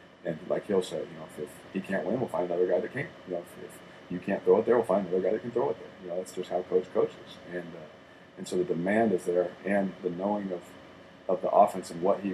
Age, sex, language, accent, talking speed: 40-59, male, English, American, 290 wpm